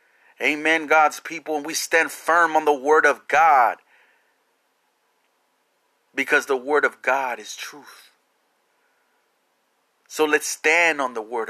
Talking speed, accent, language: 130 wpm, American, English